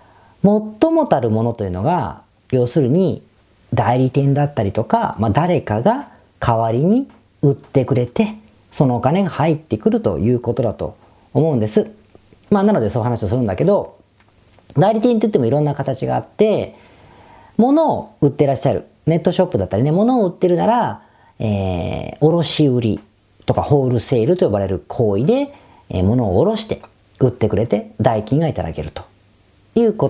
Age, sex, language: 40-59, female, Japanese